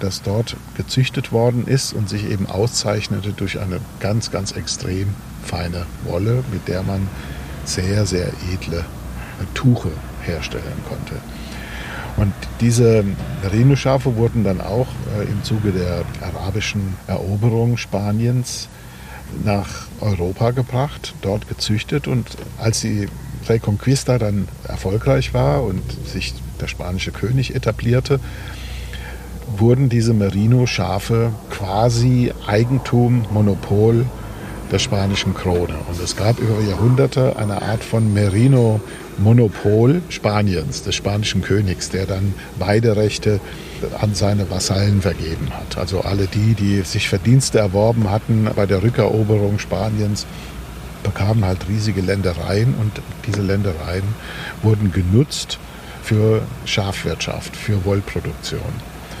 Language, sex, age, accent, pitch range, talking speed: German, male, 50-69, German, 95-115 Hz, 110 wpm